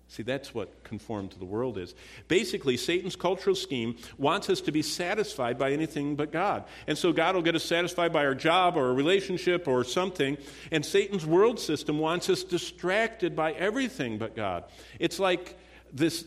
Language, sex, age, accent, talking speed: English, male, 50-69, American, 185 wpm